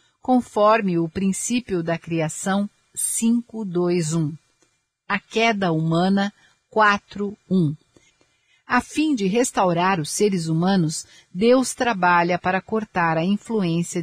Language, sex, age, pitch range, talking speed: Portuguese, female, 50-69, 170-225 Hz, 100 wpm